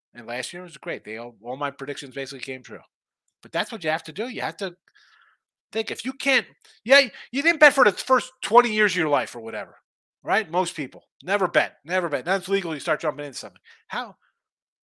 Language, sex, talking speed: English, male, 230 wpm